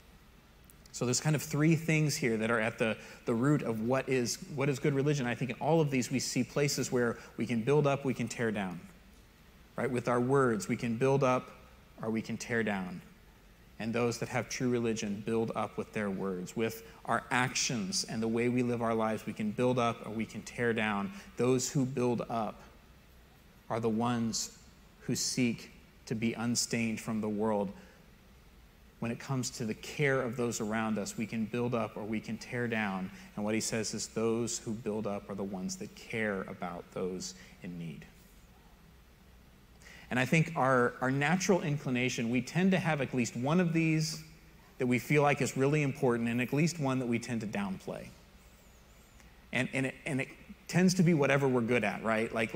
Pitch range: 110-140 Hz